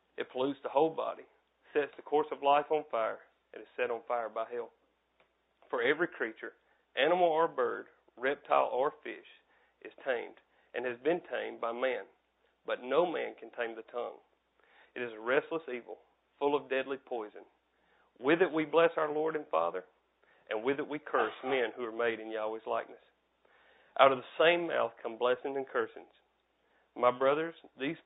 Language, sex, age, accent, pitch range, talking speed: English, male, 50-69, American, 125-155 Hz, 180 wpm